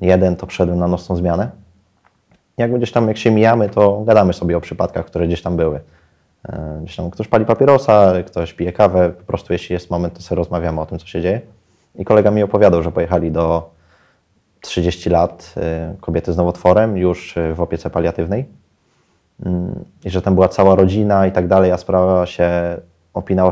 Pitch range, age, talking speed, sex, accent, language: 85-100 Hz, 20-39, 180 wpm, male, native, Polish